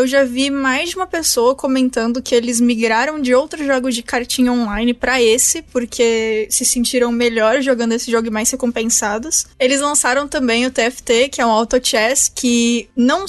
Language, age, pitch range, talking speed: Portuguese, 20-39, 235-275 Hz, 180 wpm